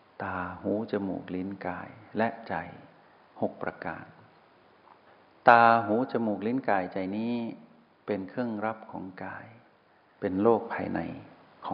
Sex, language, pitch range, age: male, Thai, 100-115 Hz, 60-79